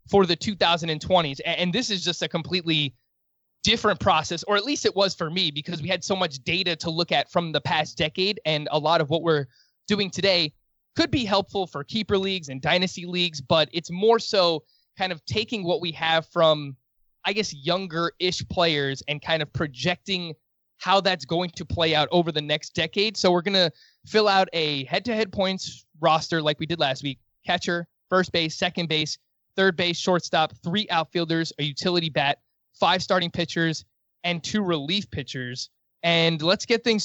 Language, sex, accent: English, male, American